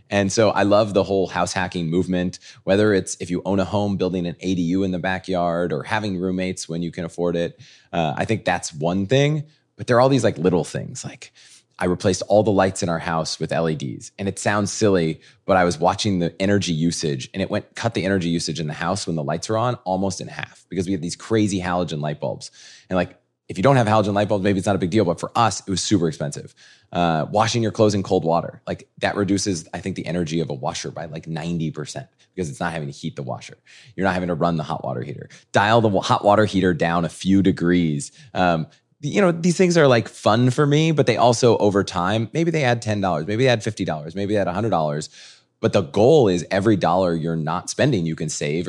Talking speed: 245 wpm